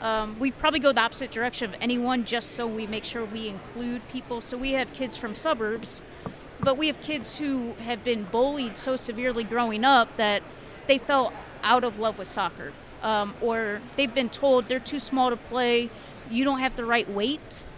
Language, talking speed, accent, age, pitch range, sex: English, 200 wpm, American, 40-59, 225-265 Hz, female